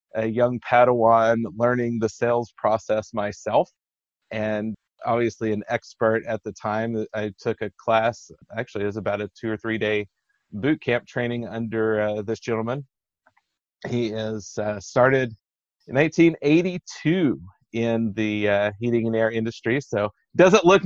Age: 30-49